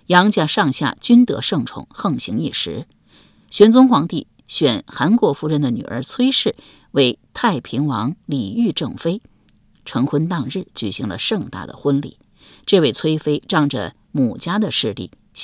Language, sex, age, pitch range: Chinese, female, 50-69, 140-220 Hz